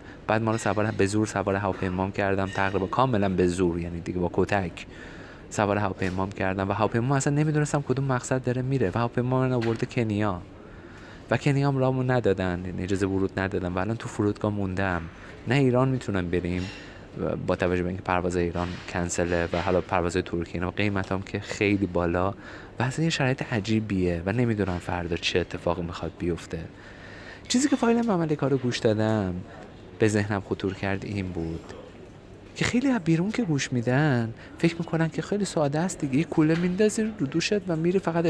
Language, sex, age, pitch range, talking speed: Persian, male, 30-49, 95-130 Hz, 175 wpm